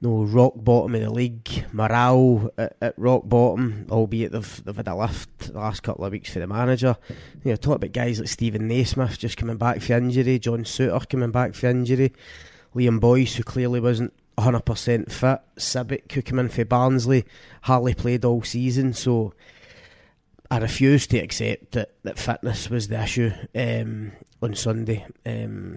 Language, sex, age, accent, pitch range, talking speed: English, male, 20-39, British, 115-130 Hz, 175 wpm